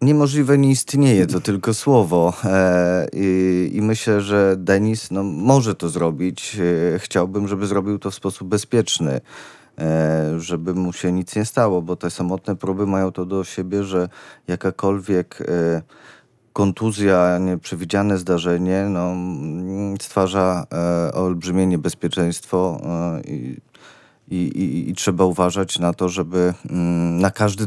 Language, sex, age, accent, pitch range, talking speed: Polish, male, 30-49, native, 85-100 Hz, 130 wpm